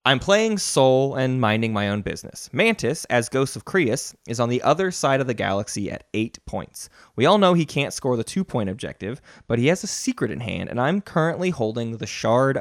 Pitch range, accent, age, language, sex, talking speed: 105-150 Hz, American, 20-39, English, male, 220 wpm